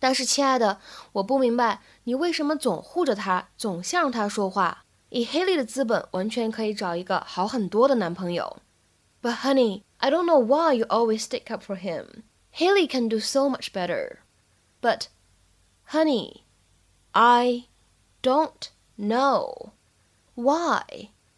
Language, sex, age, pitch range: Chinese, female, 10-29, 205-275 Hz